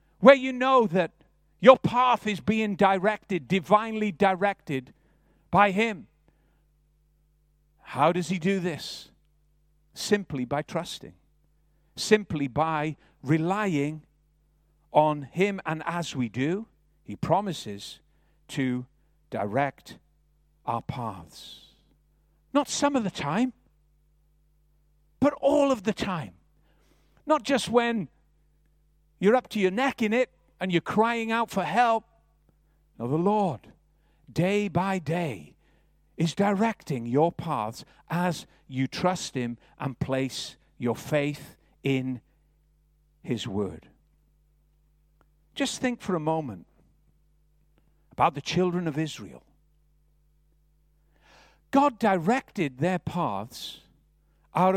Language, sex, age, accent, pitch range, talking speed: English, male, 50-69, American, 150-195 Hz, 105 wpm